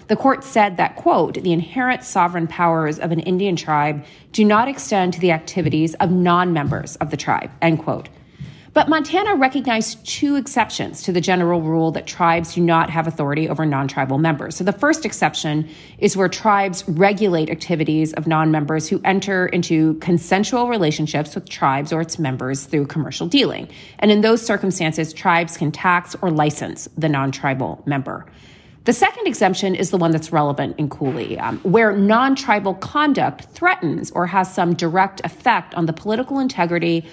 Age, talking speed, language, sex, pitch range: 30-49, 170 wpm, English, female, 155-200 Hz